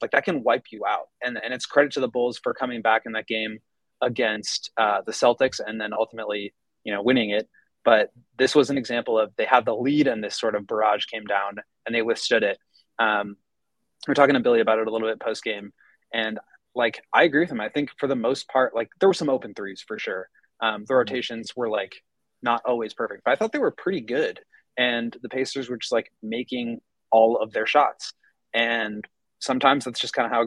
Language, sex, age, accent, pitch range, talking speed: English, male, 20-39, American, 110-125 Hz, 230 wpm